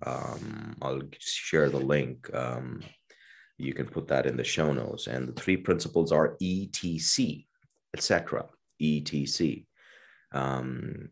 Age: 30-49